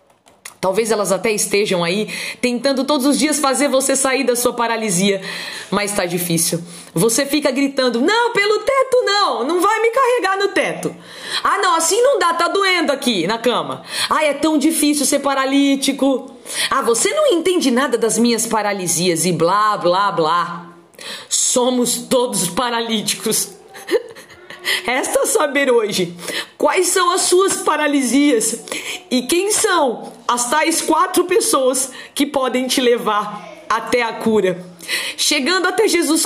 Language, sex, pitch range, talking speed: Portuguese, female, 220-310 Hz, 145 wpm